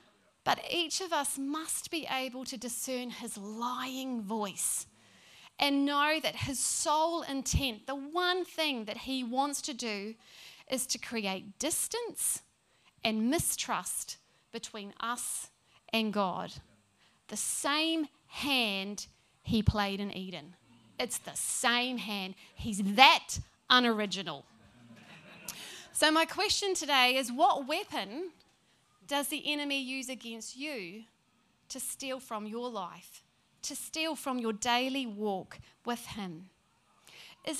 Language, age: English, 30-49